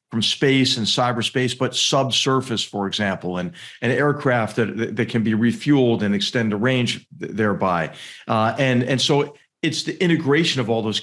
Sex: male